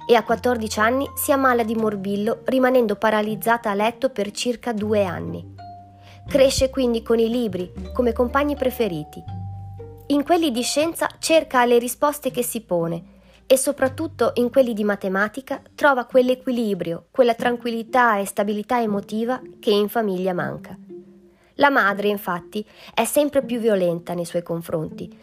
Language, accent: Italian, native